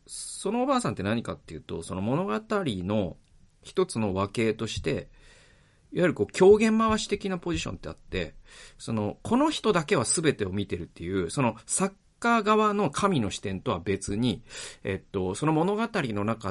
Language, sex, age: Japanese, male, 40-59